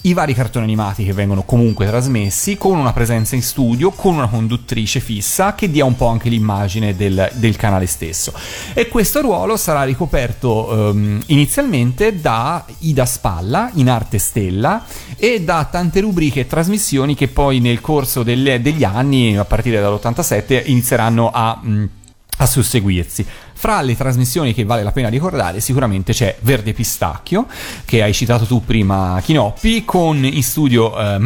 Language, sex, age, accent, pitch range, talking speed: Italian, male, 30-49, native, 110-140 Hz, 155 wpm